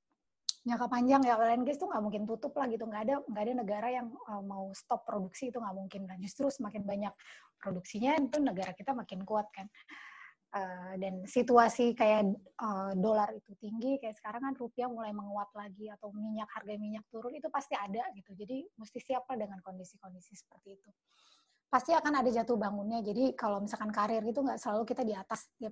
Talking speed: 190 wpm